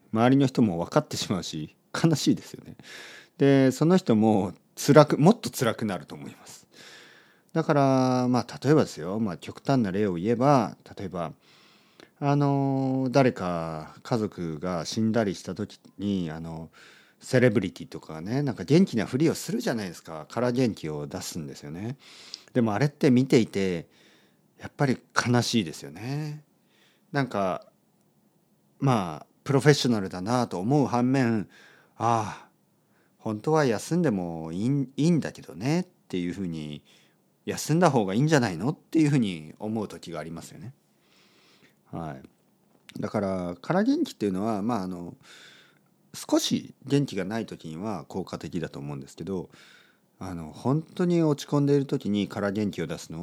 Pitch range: 85-140 Hz